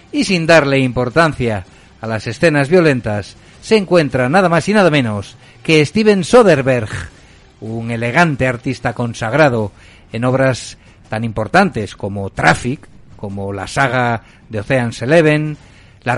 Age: 60-79